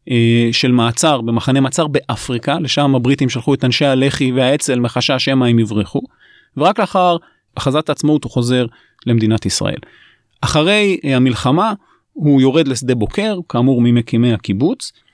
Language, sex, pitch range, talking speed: Hebrew, male, 125-165 Hz, 130 wpm